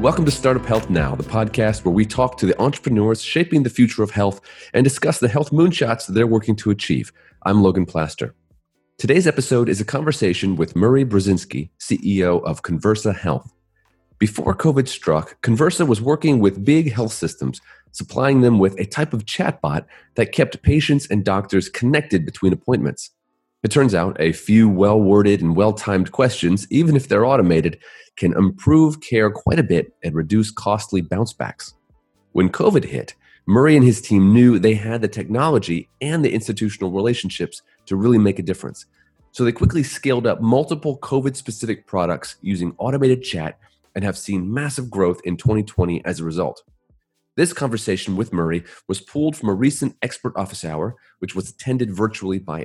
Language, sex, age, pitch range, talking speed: English, male, 30-49, 95-125 Hz, 170 wpm